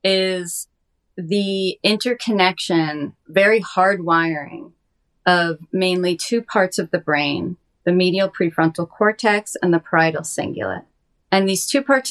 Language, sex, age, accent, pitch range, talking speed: English, female, 30-49, American, 175-210 Hz, 120 wpm